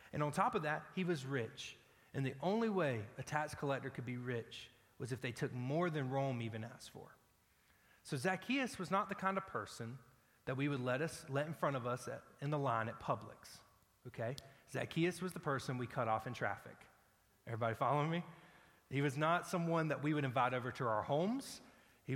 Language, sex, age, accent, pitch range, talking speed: English, male, 30-49, American, 125-175 Hz, 210 wpm